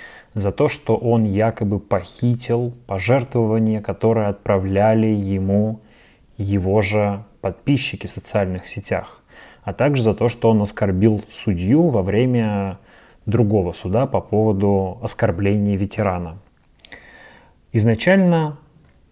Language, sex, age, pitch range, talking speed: Russian, male, 20-39, 100-120 Hz, 105 wpm